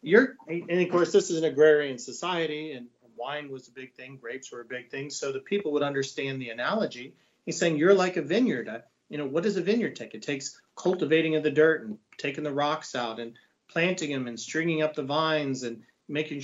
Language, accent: English, American